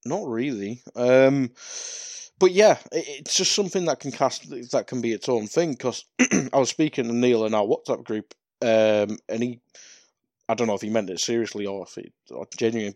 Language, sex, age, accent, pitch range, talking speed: English, male, 20-39, British, 105-135 Hz, 190 wpm